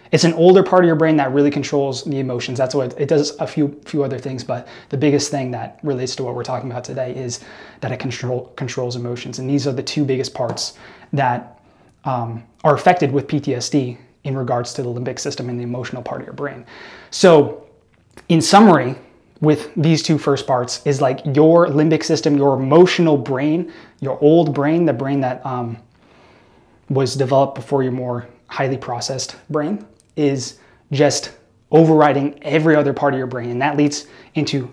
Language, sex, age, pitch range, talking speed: English, male, 20-39, 130-155 Hz, 190 wpm